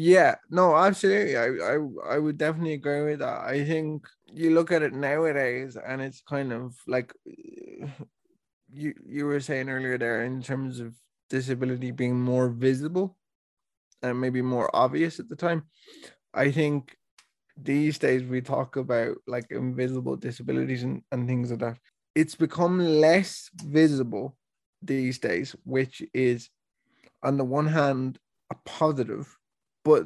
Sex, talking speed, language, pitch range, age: male, 145 wpm, English, 125-150 Hz, 20-39